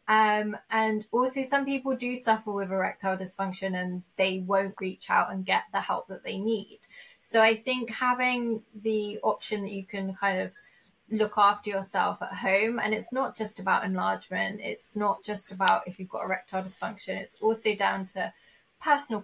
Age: 20-39